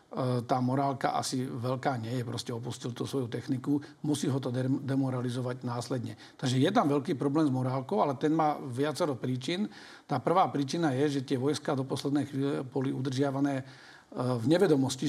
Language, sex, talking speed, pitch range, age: Slovak, male, 165 wpm, 135-150 Hz, 50-69